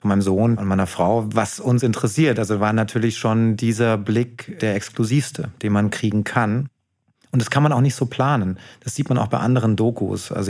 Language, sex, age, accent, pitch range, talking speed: German, male, 30-49, German, 105-125 Hz, 210 wpm